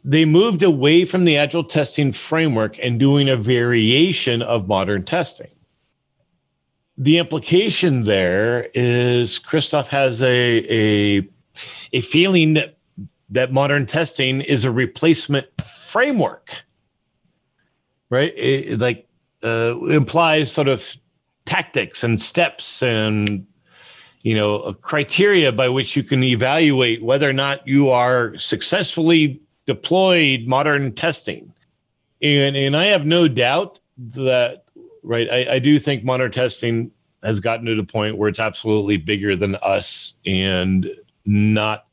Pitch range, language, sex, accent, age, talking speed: 115-150 Hz, English, male, American, 40-59, 125 wpm